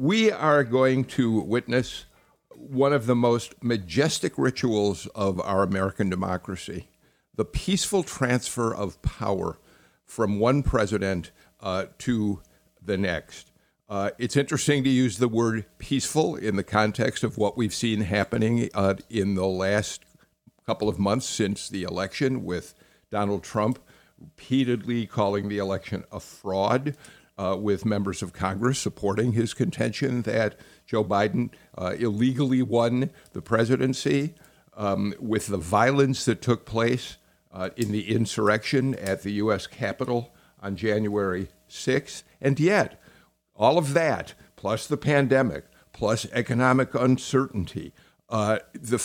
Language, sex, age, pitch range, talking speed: English, male, 50-69, 100-130 Hz, 135 wpm